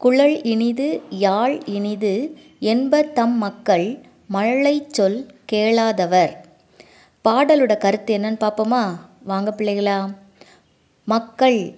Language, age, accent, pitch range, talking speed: English, 20-39, Indian, 190-250 Hz, 105 wpm